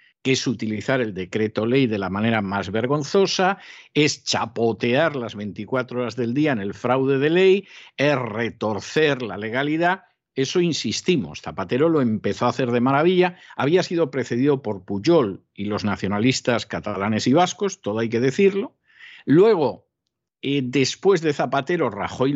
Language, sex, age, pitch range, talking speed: Spanish, male, 50-69, 115-155 Hz, 150 wpm